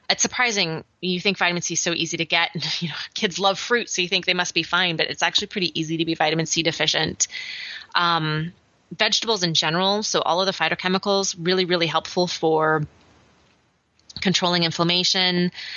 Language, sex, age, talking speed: English, female, 20-39, 180 wpm